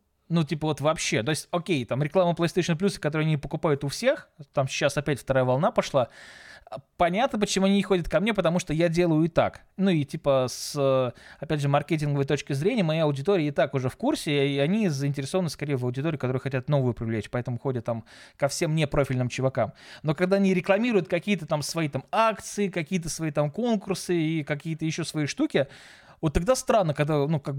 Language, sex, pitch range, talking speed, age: Russian, male, 140-180 Hz, 200 wpm, 20-39